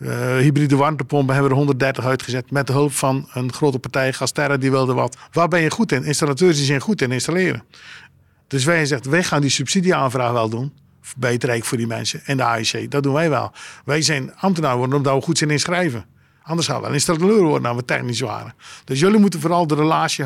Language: Dutch